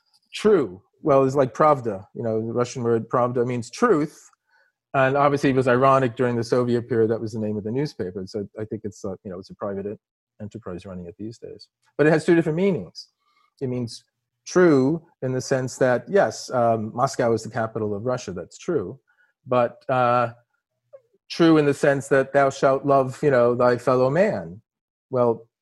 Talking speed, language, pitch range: 190 wpm, English, 110-140 Hz